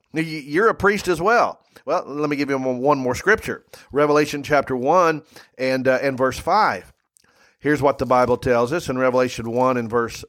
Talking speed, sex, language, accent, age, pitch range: 185 wpm, male, English, American, 40-59, 130-170 Hz